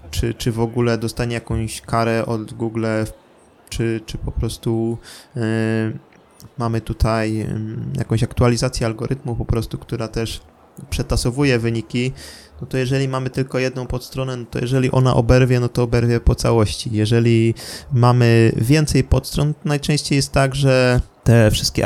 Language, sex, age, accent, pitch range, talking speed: Polish, male, 20-39, native, 115-130 Hz, 150 wpm